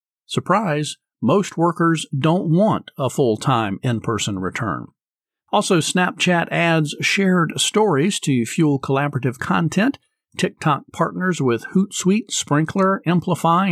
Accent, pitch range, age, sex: American, 130-175 Hz, 50-69, male